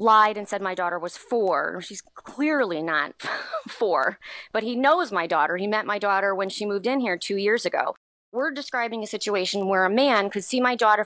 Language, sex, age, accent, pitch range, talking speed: English, female, 30-49, American, 190-245 Hz, 210 wpm